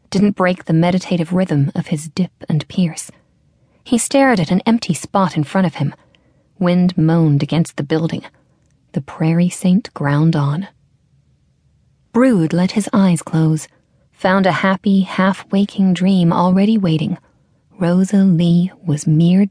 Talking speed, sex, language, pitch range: 140 wpm, female, English, 155-195 Hz